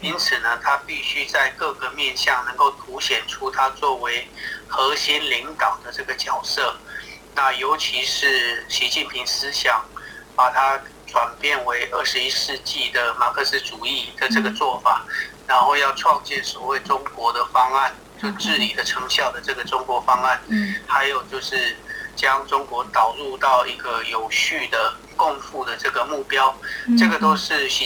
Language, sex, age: Chinese, male, 30-49